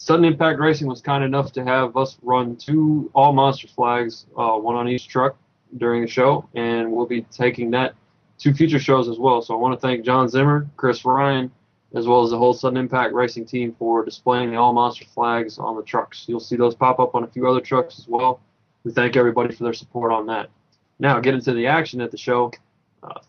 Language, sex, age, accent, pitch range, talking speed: English, male, 20-39, American, 120-135 Hz, 220 wpm